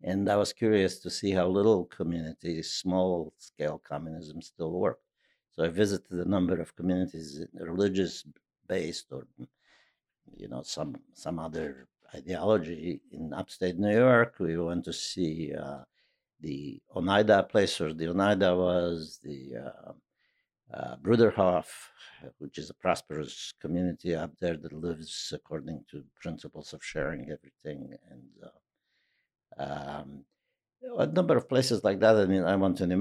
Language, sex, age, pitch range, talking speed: English, male, 60-79, 80-100 Hz, 140 wpm